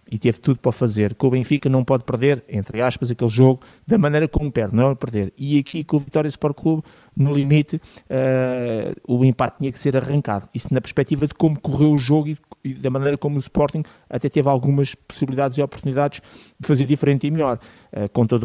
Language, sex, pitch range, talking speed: Portuguese, male, 125-150 Hz, 220 wpm